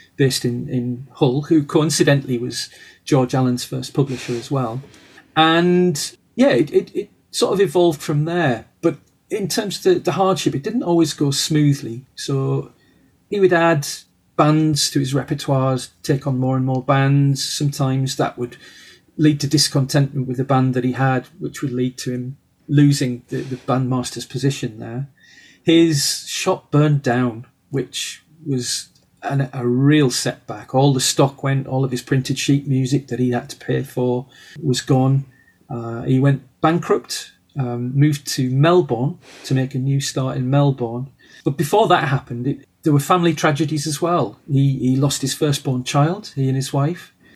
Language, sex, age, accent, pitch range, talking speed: English, male, 40-59, British, 130-155 Hz, 170 wpm